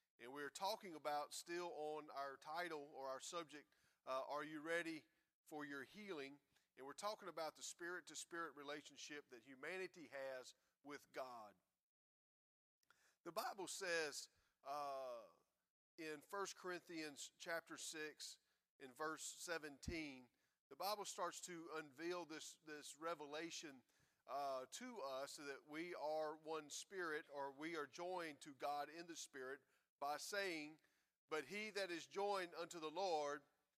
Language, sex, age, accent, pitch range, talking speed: English, male, 40-59, American, 145-175 Hz, 140 wpm